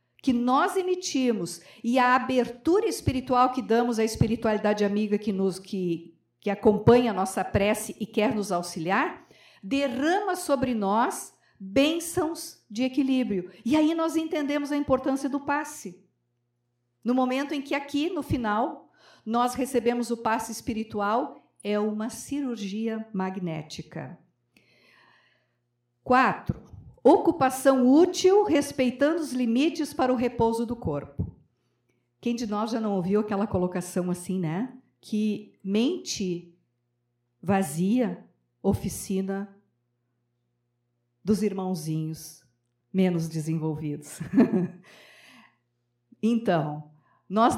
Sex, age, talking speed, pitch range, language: female, 50-69, 110 wpm, 180-255 Hz, Portuguese